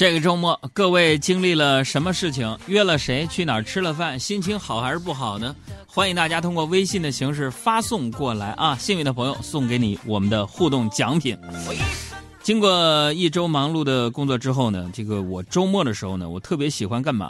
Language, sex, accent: Chinese, male, native